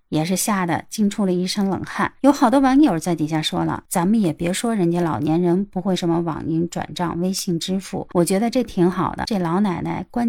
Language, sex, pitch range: Chinese, female, 165-215 Hz